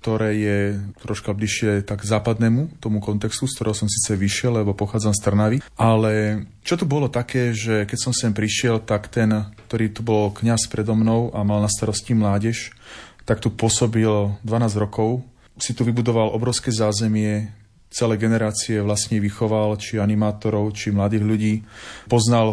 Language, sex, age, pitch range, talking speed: Slovak, male, 30-49, 105-120 Hz, 160 wpm